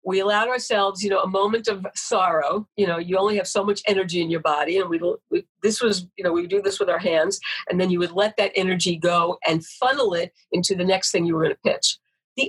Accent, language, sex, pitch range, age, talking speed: American, English, female, 175-225 Hz, 50-69, 260 wpm